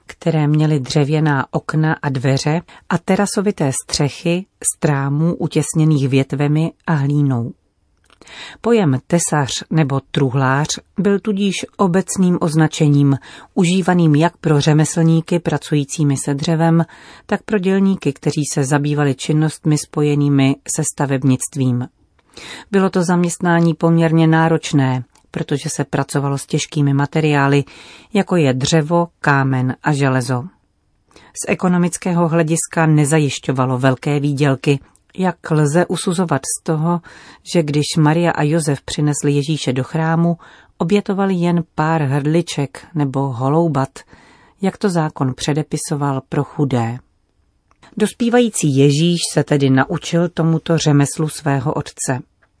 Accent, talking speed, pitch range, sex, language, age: native, 110 wpm, 140-170 Hz, female, Czech, 40-59